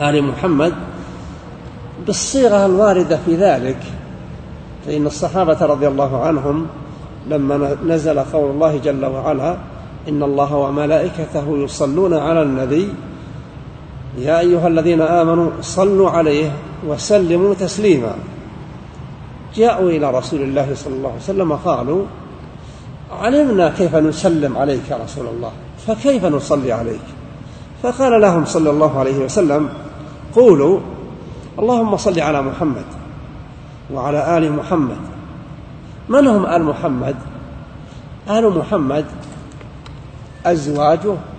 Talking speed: 100 wpm